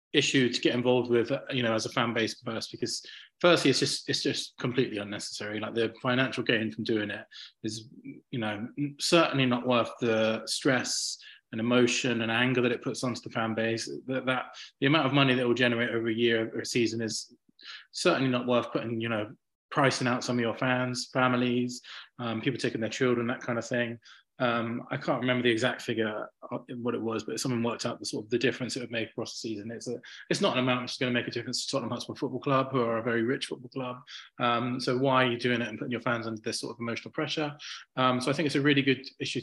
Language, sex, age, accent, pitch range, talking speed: English, male, 20-39, British, 115-130 Hz, 245 wpm